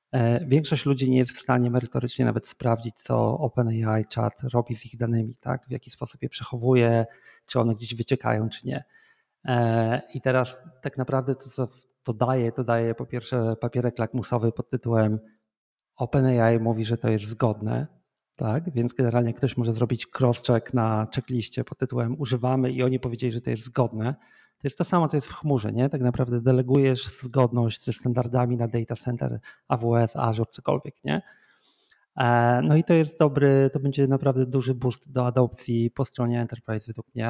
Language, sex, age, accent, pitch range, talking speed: Polish, male, 40-59, native, 115-130 Hz, 175 wpm